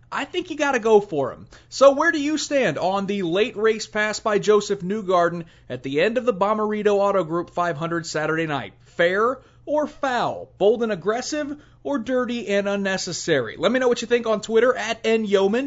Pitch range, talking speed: 145-210 Hz, 200 wpm